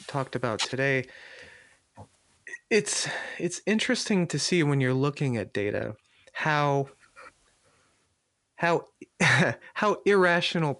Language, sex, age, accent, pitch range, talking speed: English, male, 30-49, American, 125-170 Hz, 95 wpm